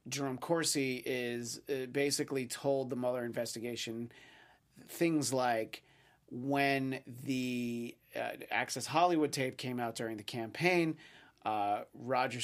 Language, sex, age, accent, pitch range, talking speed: English, male, 30-49, American, 120-160 Hz, 115 wpm